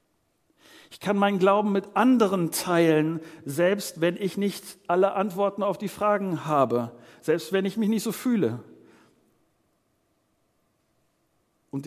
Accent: German